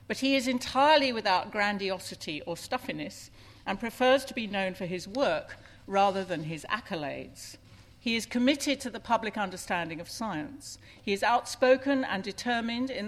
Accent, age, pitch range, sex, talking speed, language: British, 50-69, 175-230 Hz, female, 160 wpm, English